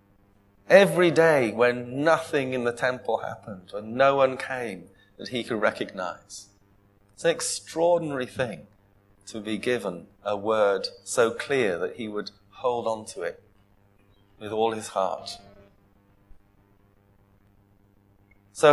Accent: British